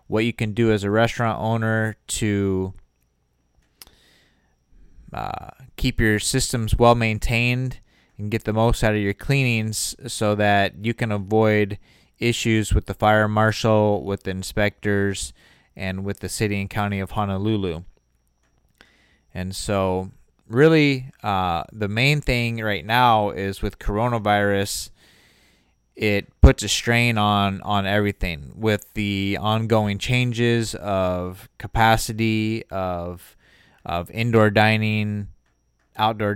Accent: American